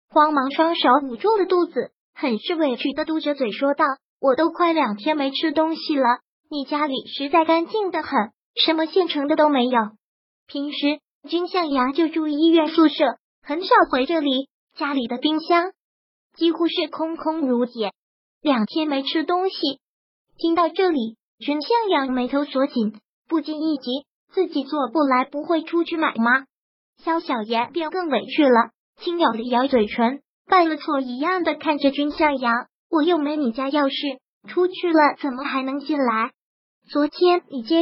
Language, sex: Chinese, male